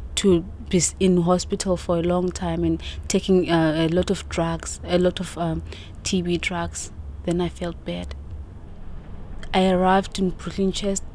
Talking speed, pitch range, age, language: 160 wpm, 165-195 Hz, 20-39, English